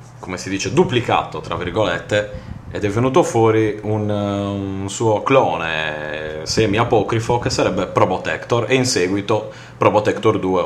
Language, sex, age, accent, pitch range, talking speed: Italian, male, 30-49, native, 90-120 Hz, 130 wpm